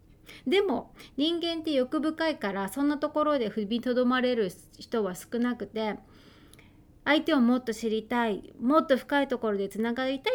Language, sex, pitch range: Japanese, female, 220-295 Hz